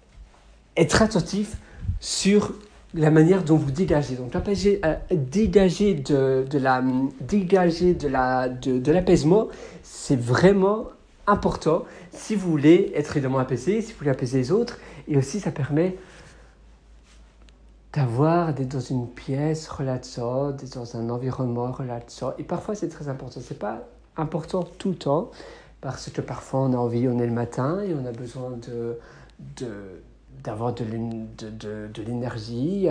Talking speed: 145 wpm